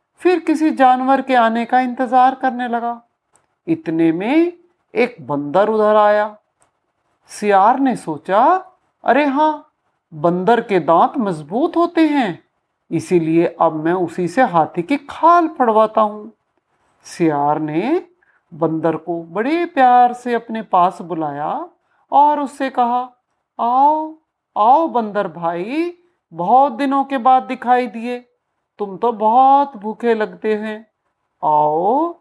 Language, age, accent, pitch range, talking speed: Hindi, 50-69, native, 180-290 Hz, 125 wpm